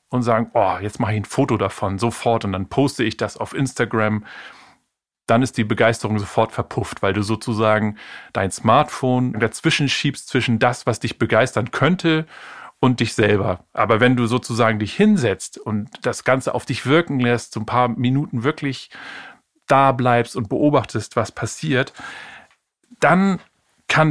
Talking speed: 160 wpm